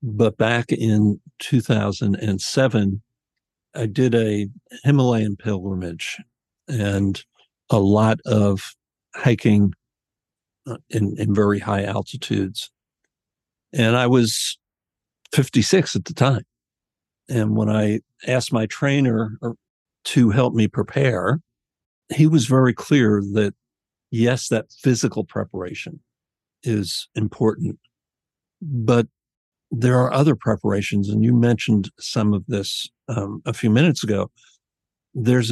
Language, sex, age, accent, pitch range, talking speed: English, male, 60-79, American, 105-125 Hz, 110 wpm